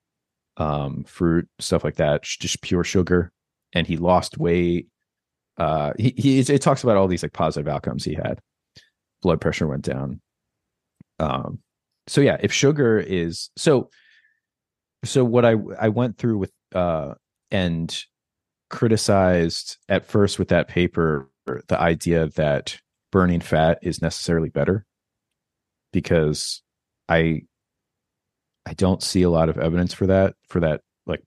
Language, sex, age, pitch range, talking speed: English, male, 30-49, 80-100 Hz, 140 wpm